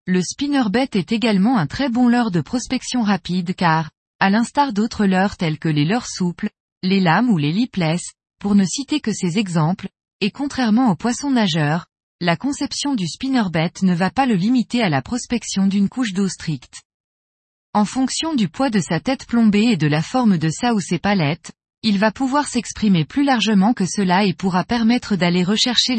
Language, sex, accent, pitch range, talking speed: French, female, French, 180-240 Hz, 190 wpm